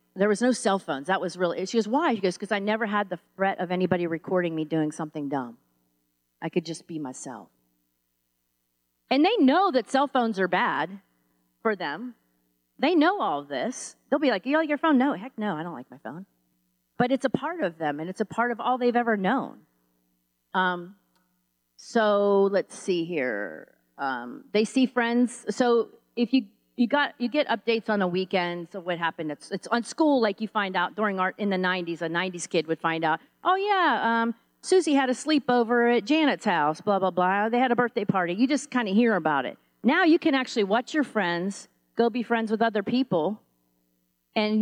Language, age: English, 40-59